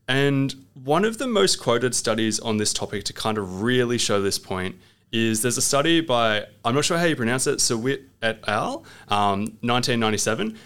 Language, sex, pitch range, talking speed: English, male, 100-130 Hz, 190 wpm